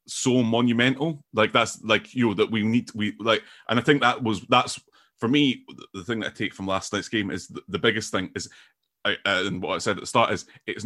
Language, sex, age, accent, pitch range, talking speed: English, male, 30-49, British, 100-120 Hz, 250 wpm